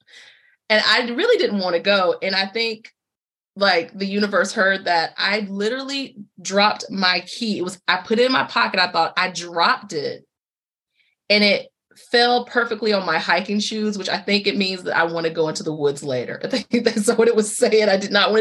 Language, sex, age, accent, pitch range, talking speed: English, female, 30-49, American, 175-235 Hz, 215 wpm